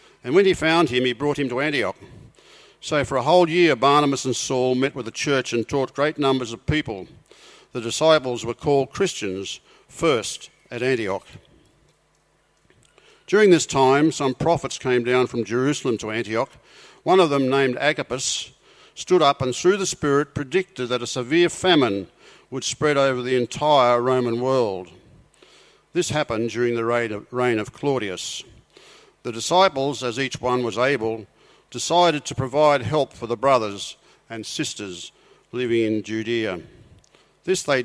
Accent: Australian